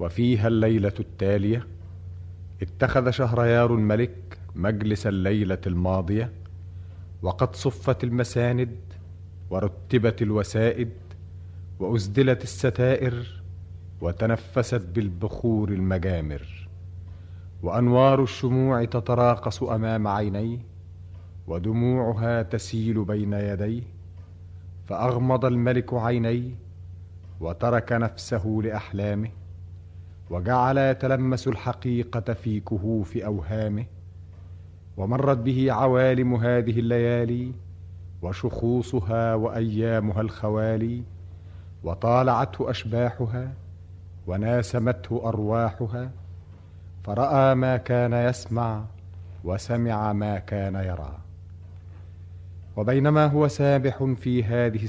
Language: Arabic